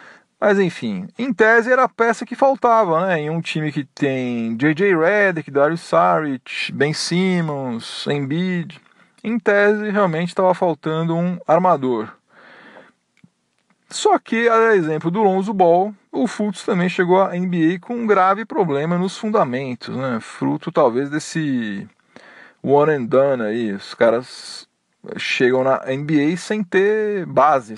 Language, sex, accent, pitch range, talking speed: Portuguese, male, Brazilian, 140-200 Hz, 140 wpm